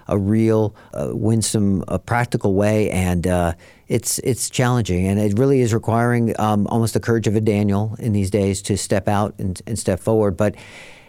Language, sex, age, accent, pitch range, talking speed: English, male, 50-69, American, 95-110 Hz, 195 wpm